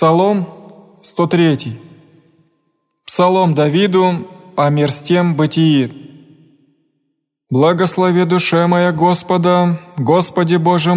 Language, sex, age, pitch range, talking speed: Greek, male, 20-39, 170-180 Hz, 80 wpm